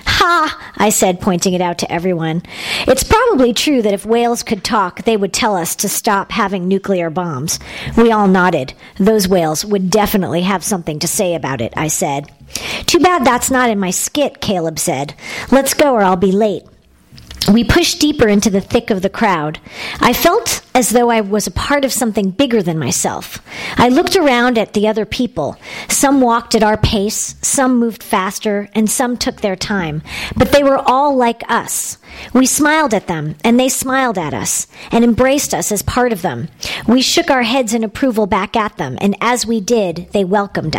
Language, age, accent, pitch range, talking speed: English, 50-69, American, 190-260 Hz, 195 wpm